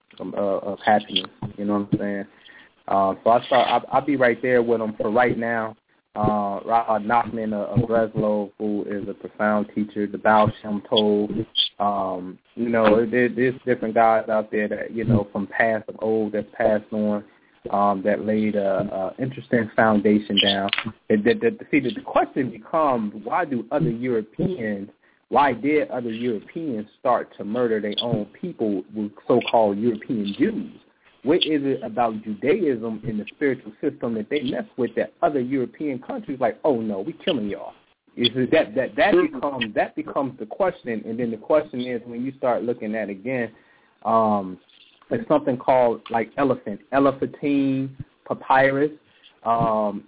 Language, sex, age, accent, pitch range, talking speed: English, male, 20-39, American, 105-125 Hz, 170 wpm